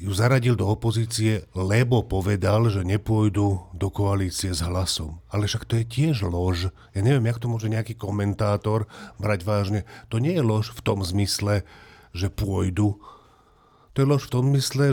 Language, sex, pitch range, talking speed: Slovak, male, 105-125 Hz, 170 wpm